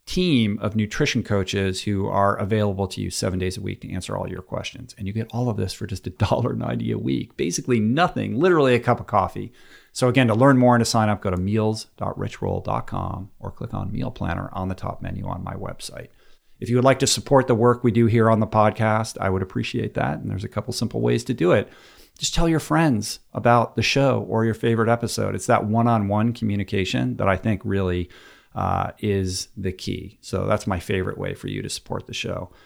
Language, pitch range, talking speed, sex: English, 100-120 Hz, 225 wpm, male